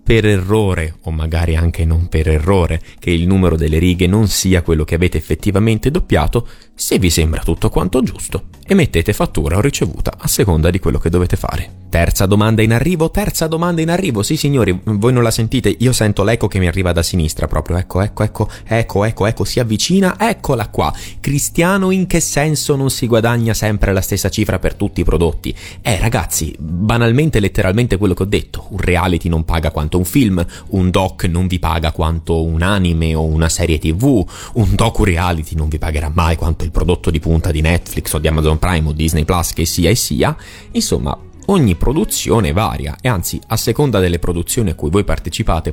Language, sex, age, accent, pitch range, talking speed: Italian, male, 30-49, native, 80-110 Hz, 200 wpm